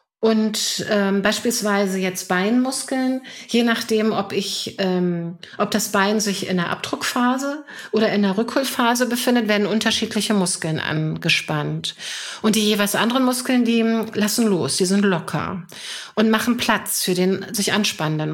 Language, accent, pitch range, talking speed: German, German, 185-230 Hz, 145 wpm